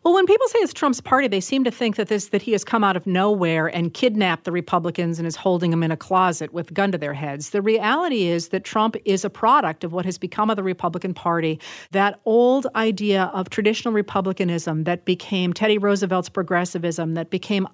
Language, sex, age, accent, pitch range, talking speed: English, female, 40-59, American, 180-225 Hz, 220 wpm